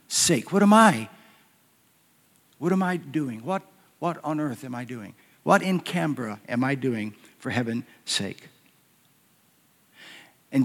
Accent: American